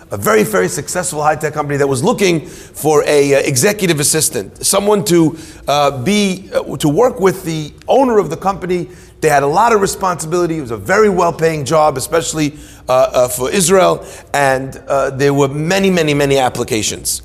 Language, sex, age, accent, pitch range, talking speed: English, male, 40-59, American, 145-190 Hz, 180 wpm